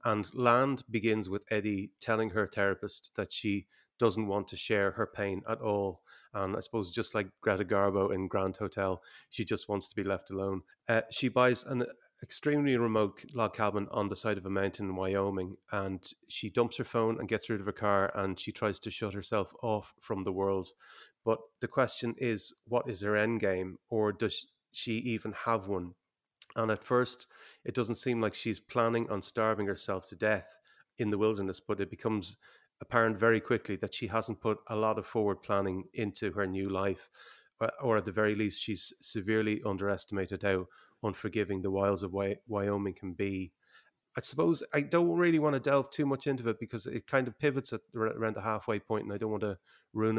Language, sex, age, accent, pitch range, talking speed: English, male, 30-49, Irish, 100-115 Hz, 200 wpm